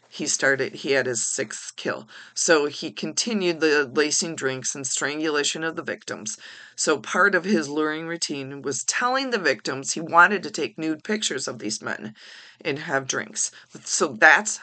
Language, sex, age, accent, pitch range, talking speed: English, female, 40-59, American, 130-165 Hz, 170 wpm